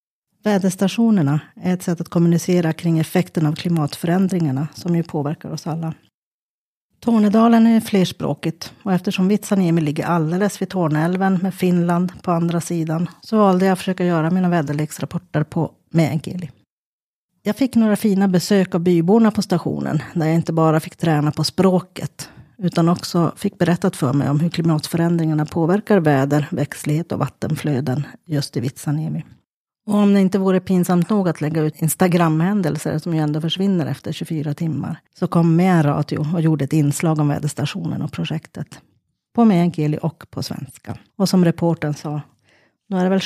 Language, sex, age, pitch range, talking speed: Swedish, female, 30-49, 155-185 Hz, 160 wpm